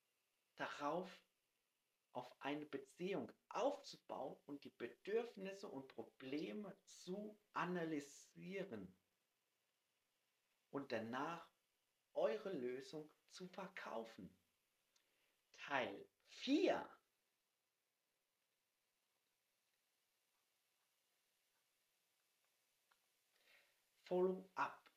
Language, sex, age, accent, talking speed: German, male, 50-69, German, 50 wpm